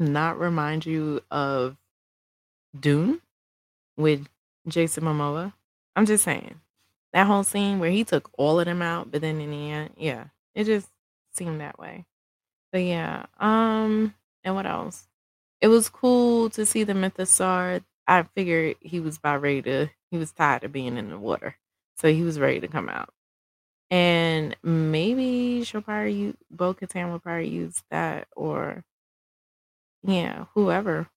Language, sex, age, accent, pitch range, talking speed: English, female, 20-39, American, 150-195 Hz, 155 wpm